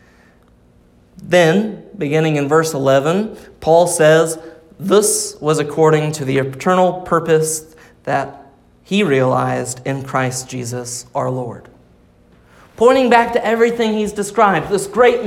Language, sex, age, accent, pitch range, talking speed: English, male, 30-49, American, 160-240 Hz, 120 wpm